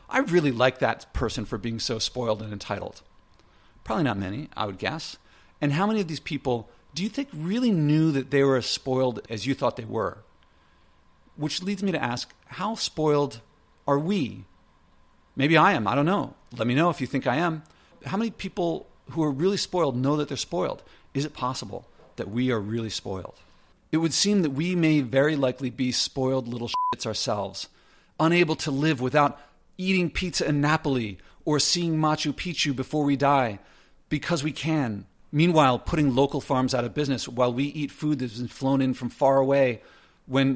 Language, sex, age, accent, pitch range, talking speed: English, male, 50-69, American, 120-150 Hz, 190 wpm